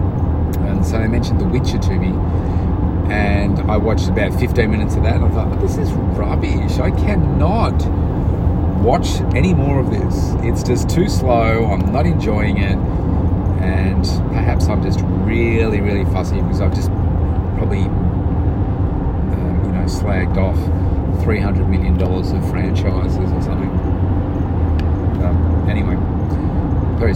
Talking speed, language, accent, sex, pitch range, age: 135 wpm, English, Australian, male, 90-95 Hz, 40-59